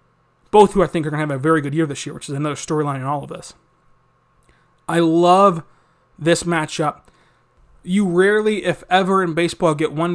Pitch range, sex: 155-185 Hz, male